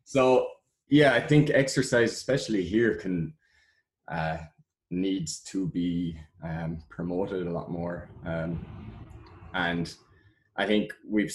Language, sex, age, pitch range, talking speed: English, male, 20-39, 80-100 Hz, 115 wpm